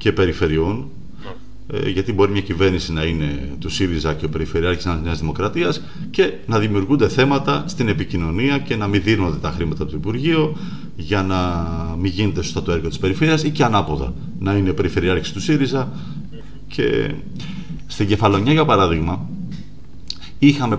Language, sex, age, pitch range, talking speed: Greek, male, 40-59, 85-135 Hz, 150 wpm